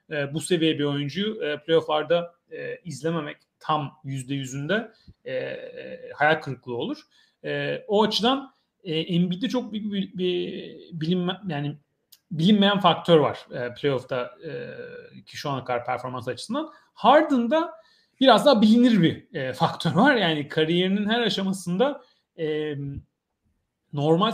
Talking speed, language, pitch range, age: 125 wpm, Turkish, 155-230 Hz, 40-59